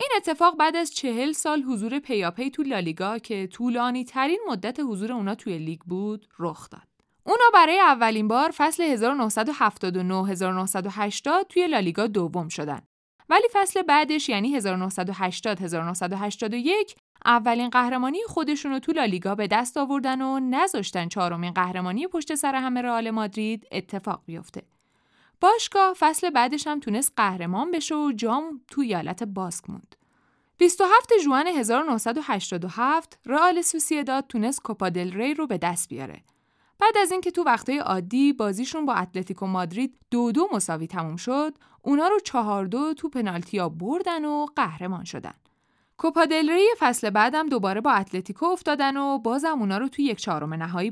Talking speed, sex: 145 wpm, female